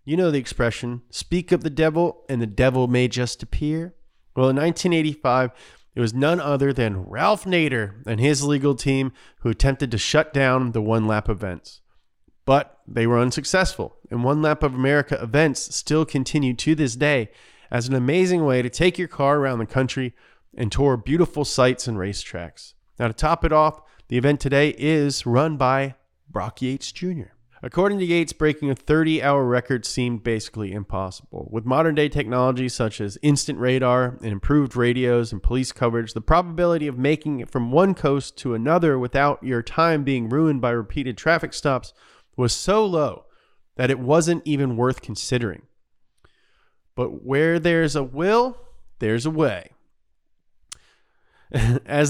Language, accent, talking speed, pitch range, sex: English, American, 165 wpm, 120-155 Hz, male